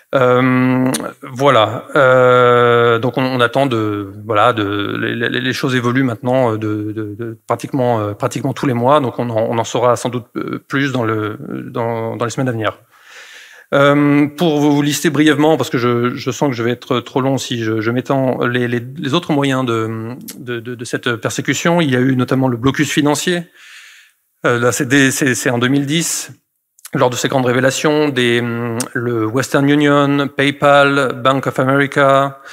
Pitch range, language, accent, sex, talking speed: 120-140 Hz, French, French, male, 190 wpm